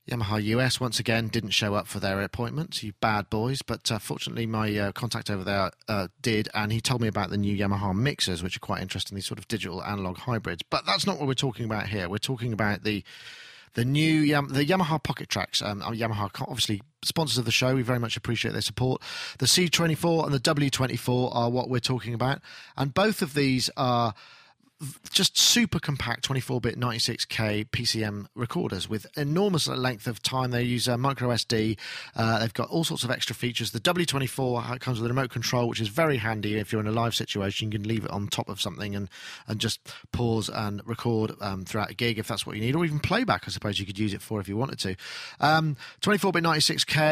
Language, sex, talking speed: English, male, 220 wpm